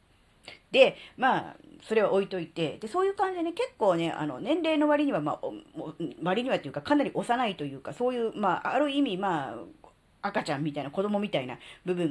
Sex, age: female, 40-59